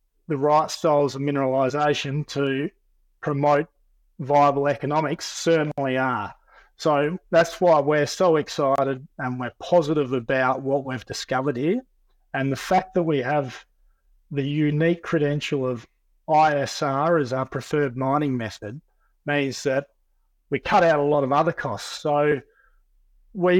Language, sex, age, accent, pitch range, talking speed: English, male, 30-49, Australian, 130-155 Hz, 135 wpm